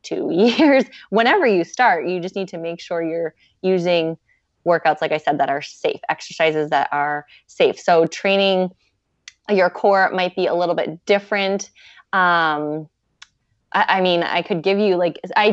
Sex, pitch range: female, 165-205 Hz